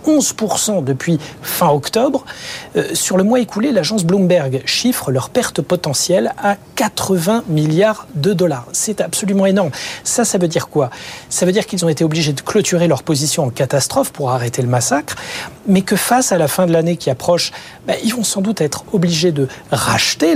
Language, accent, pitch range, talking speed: French, French, 150-195 Hz, 190 wpm